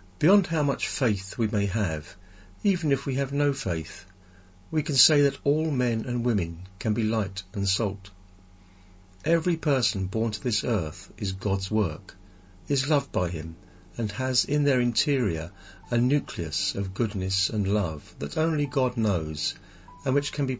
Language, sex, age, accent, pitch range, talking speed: English, male, 50-69, British, 90-125 Hz, 170 wpm